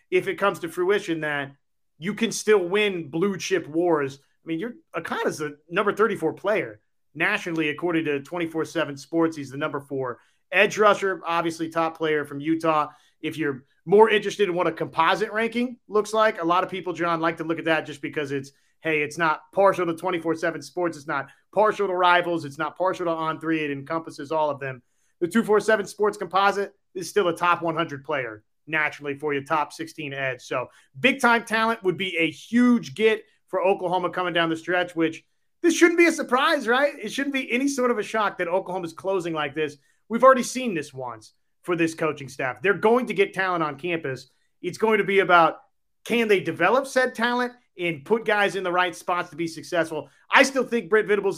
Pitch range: 155-205 Hz